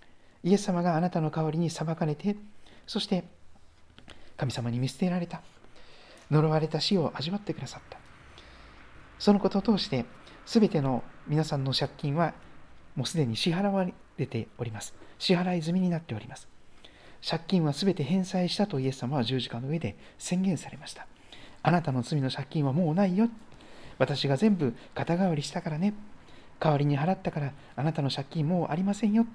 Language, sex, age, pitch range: Japanese, male, 40-59, 120-190 Hz